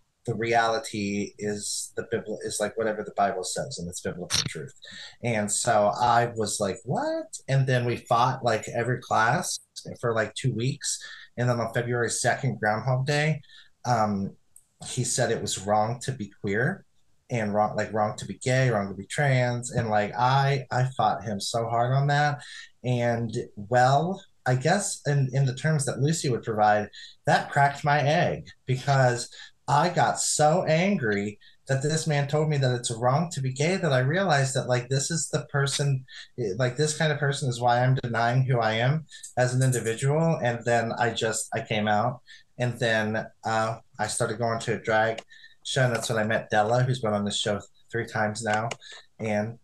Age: 30-49